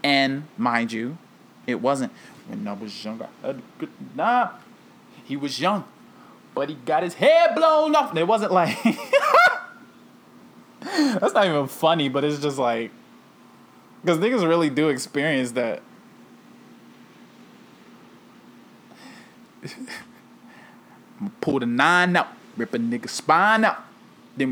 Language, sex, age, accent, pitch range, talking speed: English, male, 20-39, American, 120-200 Hz, 120 wpm